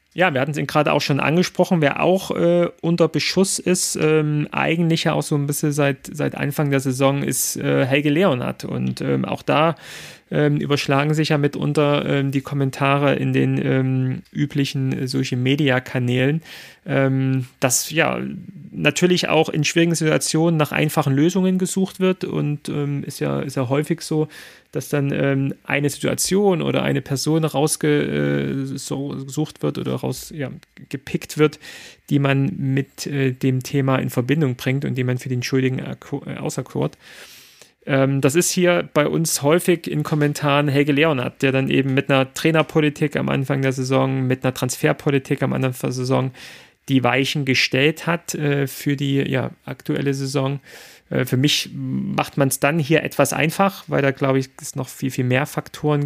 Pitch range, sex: 130-155 Hz, male